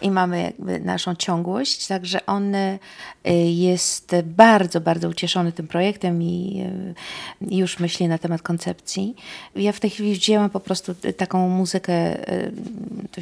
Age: 40-59